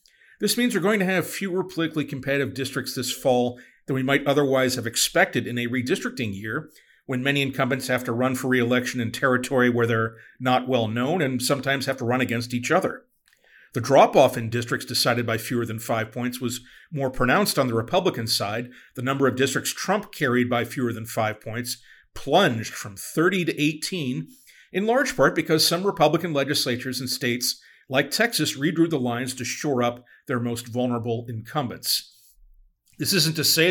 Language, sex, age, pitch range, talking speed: English, male, 40-59, 125-155 Hz, 185 wpm